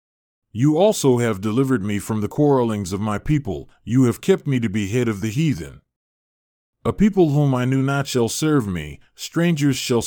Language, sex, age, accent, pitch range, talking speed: English, male, 40-59, American, 105-140 Hz, 190 wpm